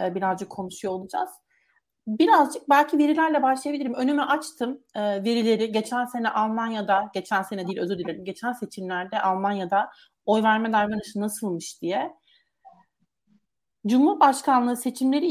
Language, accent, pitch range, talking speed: Turkish, native, 205-265 Hz, 110 wpm